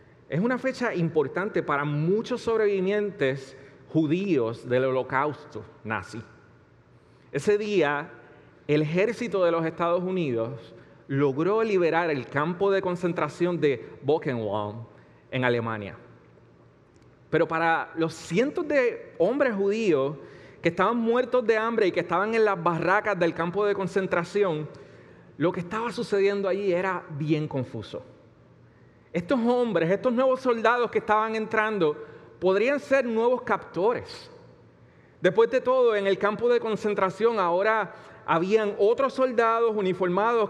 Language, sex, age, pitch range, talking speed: Spanish, male, 30-49, 145-220 Hz, 125 wpm